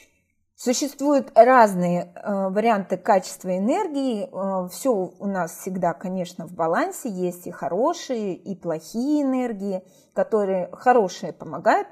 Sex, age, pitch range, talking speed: female, 30-49, 185-255 Hz, 105 wpm